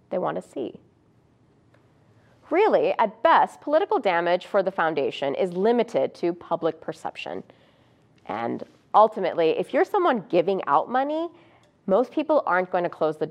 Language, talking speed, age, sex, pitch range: English, 145 wpm, 30-49, female, 175-280 Hz